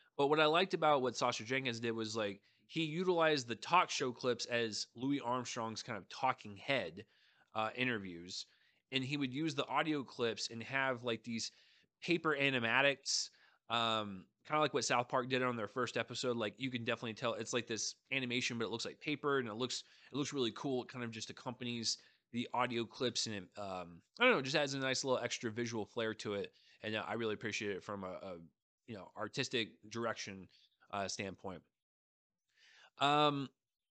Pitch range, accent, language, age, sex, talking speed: 110-140 Hz, American, English, 20-39, male, 195 wpm